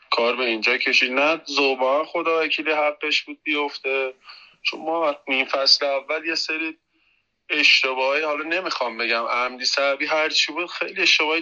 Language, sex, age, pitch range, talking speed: Persian, male, 20-39, 125-165 Hz, 145 wpm